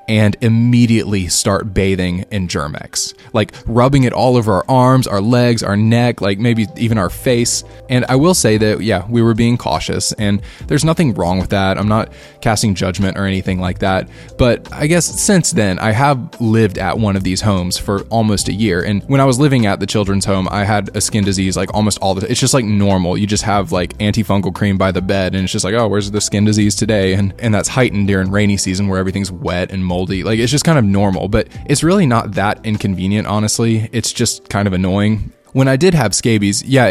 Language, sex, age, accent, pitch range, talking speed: English, male, 10-29, American, 95-115 Hz, 230 wpm